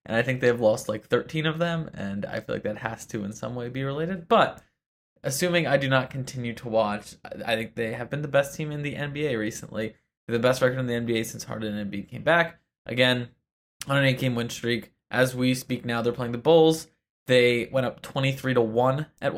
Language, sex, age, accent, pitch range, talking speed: English, male, 20-39, American, 115-140 Hz, 230 wpm